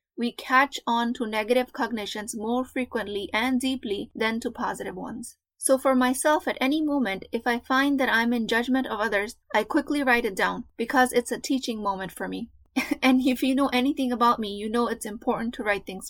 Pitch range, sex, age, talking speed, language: 220-260 Hz, female, 20-39, 205 wpm, English